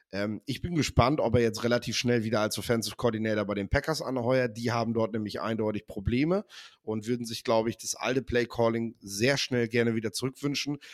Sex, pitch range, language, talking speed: male, 110-130 Hz, German, 195 wpm